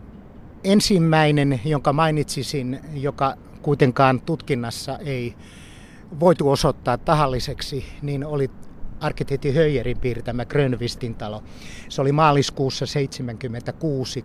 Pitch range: 120-150 Hz